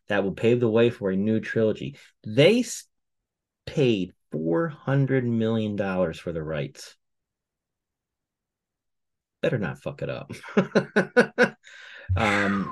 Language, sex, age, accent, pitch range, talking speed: English, male, 30-49, American, 95-125 Hz, 105 wpm